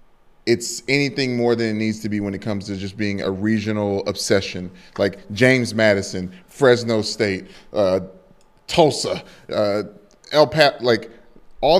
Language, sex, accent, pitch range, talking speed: English, male, American, 105-125 Hz, 145 wpm